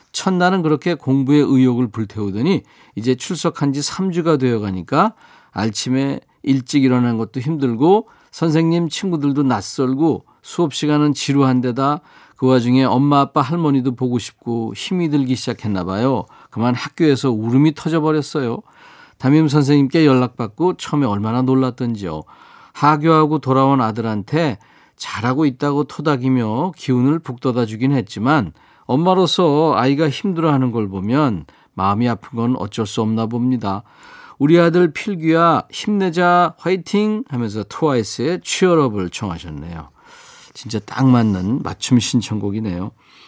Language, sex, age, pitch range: Korean, male, 40-59, 115-160 Hz